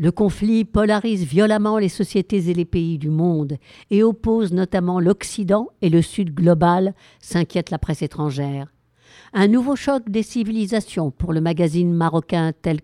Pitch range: 160-210 Hz